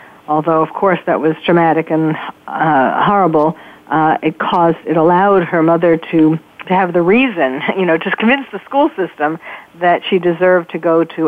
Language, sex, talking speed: English, female, 180 wpm